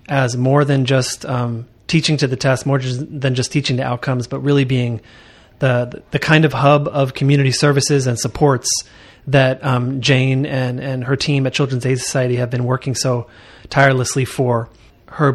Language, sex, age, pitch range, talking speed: English, male, 30-49, 125-140 Hz, 180 wpm